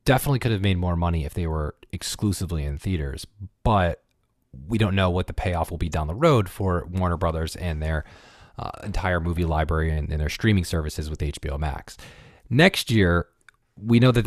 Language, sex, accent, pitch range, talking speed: English, male, American, 85-115 Hz, 195 wpm